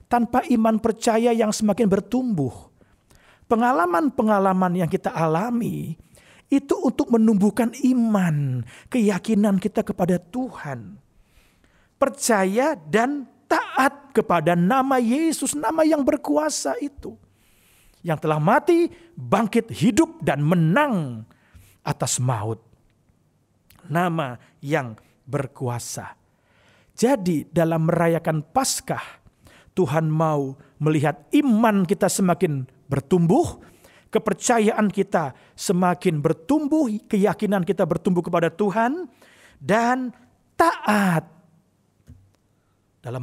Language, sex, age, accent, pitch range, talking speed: Indonesian, male, 40-59, native, 140-235 Hz, 85 wpm